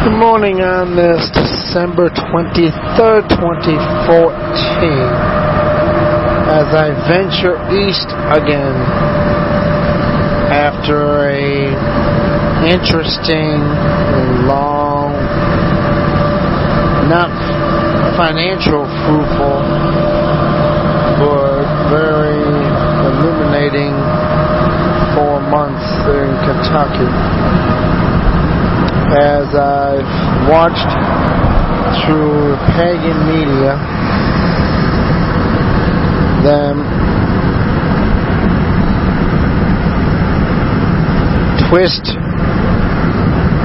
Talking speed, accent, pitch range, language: 50 wpm, American, 140-160 Hz, English